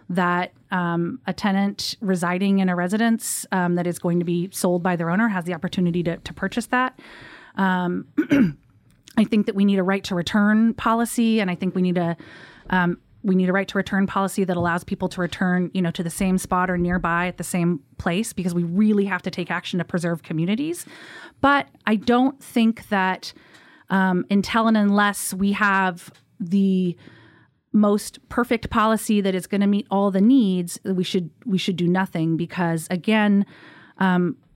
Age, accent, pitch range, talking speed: 30-49, American, 175-205 Hz, 190 wpm